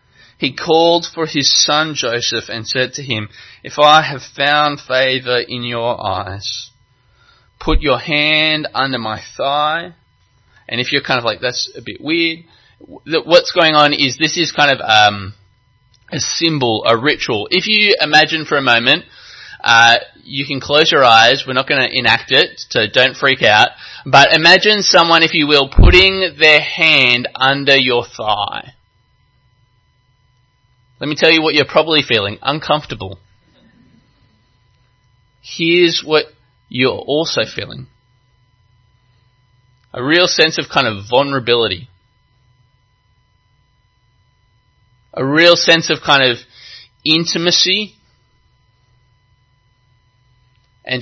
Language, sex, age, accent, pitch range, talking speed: English, male, 20-39, Australian, 120-150 Hz, 130 wpm